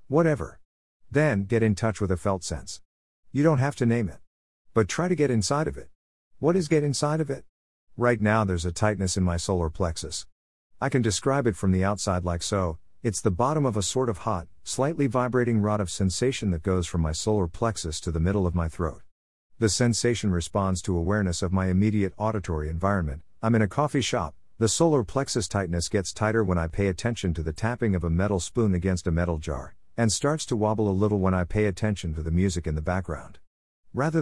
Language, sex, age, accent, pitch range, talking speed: English, male, 50-69, American, 90-120 Hz, 215 wpm